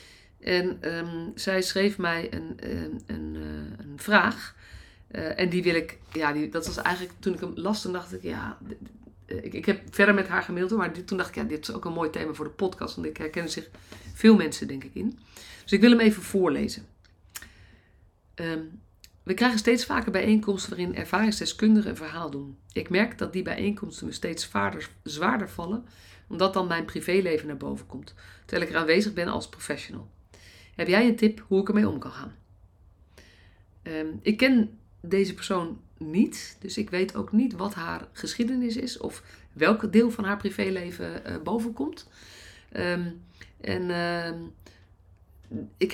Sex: female